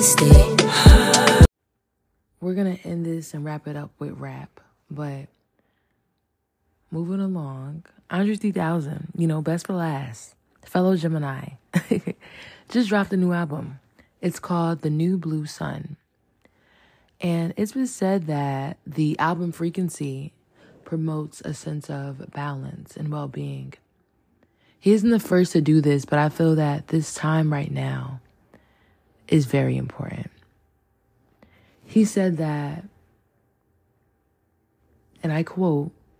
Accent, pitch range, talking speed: American, 130-175 Hz, 120 wpm